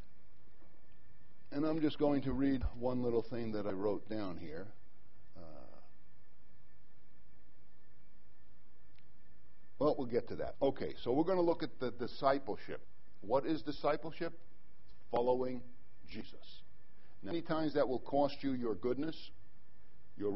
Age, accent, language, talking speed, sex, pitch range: 60-79, American, English, 130 wpm, male, 135-225 Hz